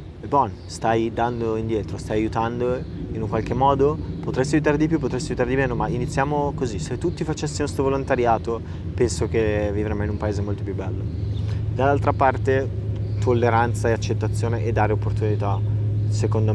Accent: native